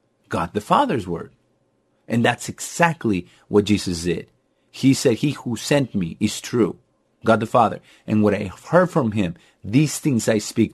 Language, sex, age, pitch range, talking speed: English, male, 30-49, 110-160 Hz, 175 wpm